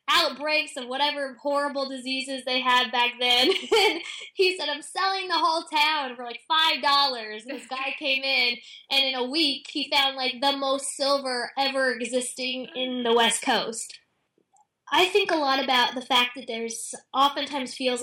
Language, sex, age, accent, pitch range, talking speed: English, female, 20-39, American, 215-280 Hz, 170 wpm